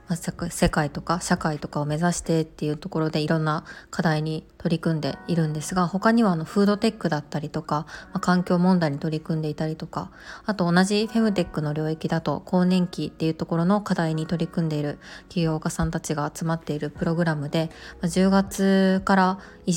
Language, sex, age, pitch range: Japanese, female, 20-39, 155-185 Hz